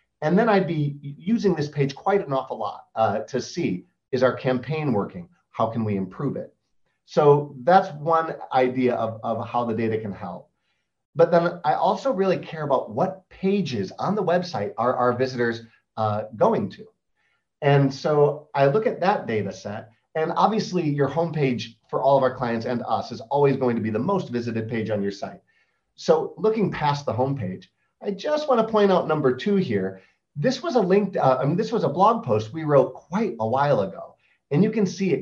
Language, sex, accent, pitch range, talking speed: English, male, American, 120-180 Hz, 205 wpm